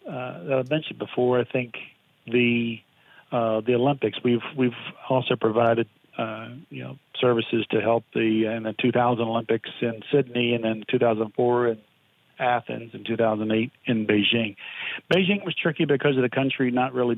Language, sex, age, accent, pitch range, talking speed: English, male, 40-59, American, 115-130 Hz, 160 wpm